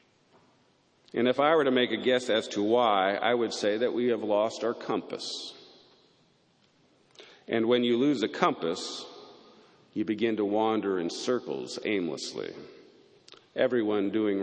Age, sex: 50-69, male